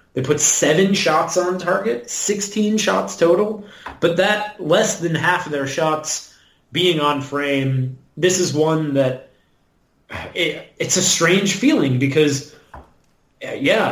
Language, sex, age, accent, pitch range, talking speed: English, male, 30-49, American, 135-180 Hz, 130 wpm